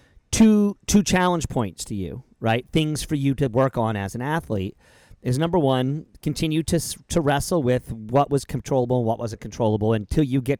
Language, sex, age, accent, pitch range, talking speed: English, male, 40-59, American, 115-145 Hz, 190 wpm